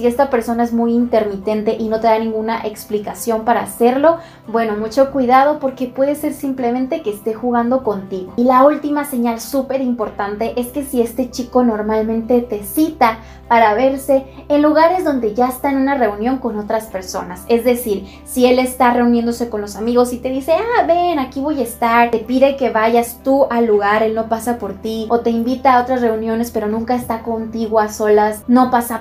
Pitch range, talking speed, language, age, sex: 225-260 Hz, 195 wpm, Spanish, 20-39, female